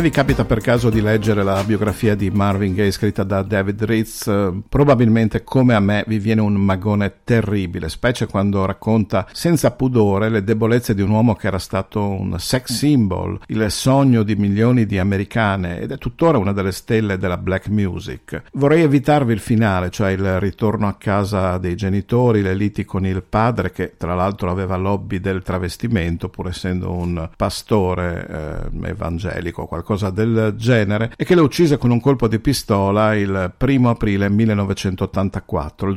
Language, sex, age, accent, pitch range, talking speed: Italian, male, 50-69, native, 95-115 Hz, 170 wpm